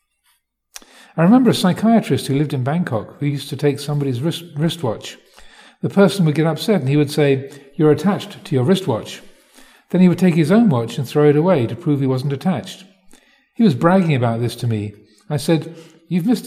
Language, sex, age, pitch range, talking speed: English, male, 50-69, 130-180 Hz, 200 wpm